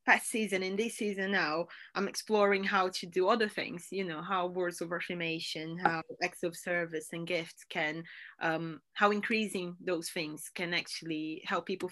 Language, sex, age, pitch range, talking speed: English, female, 20-39, 165-195 Hz, 175 wpm